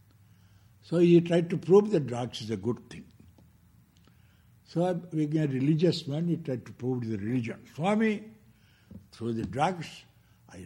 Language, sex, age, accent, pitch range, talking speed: English, male, 60-79, Indian, 110-160 Hz, 150 wpm